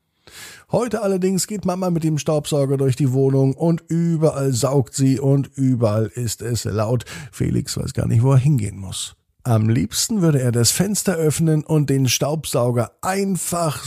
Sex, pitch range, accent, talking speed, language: male, 115-155 Hz, German, 165 wpm, German